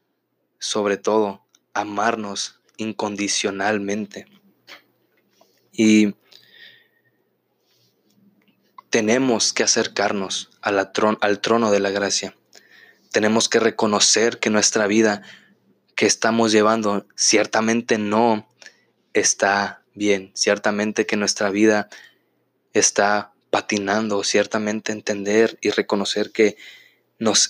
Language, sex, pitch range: Spanish, male, 105-110 Hz